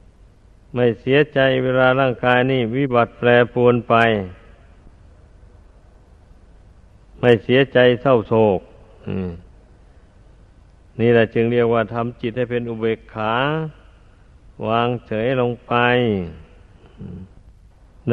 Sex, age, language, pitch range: male, 60-79, Thai, 95-125 Hz